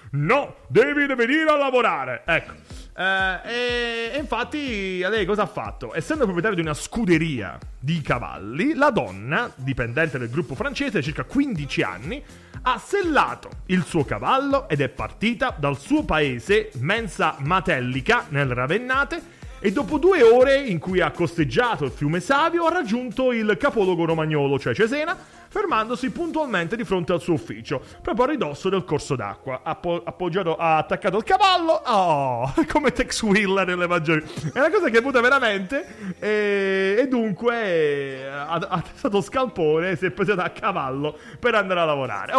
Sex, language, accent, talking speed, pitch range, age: male, Italian, native, 155 wpm, 155-255 Hz, 30-49